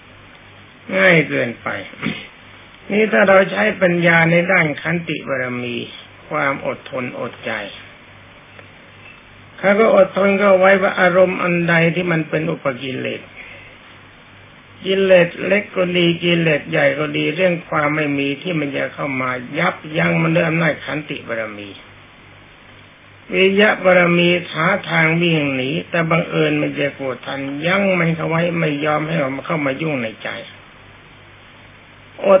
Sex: male